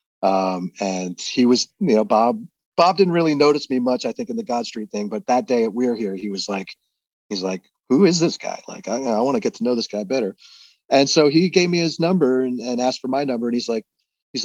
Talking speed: 265 wpm